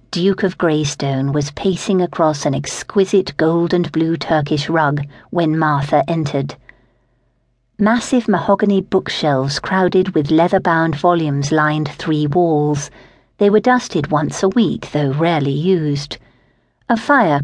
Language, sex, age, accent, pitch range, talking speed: English, female, 50-69, British, 145-185 Hz, 125 wpm